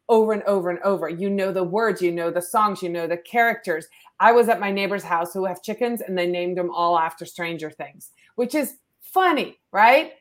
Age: 30-49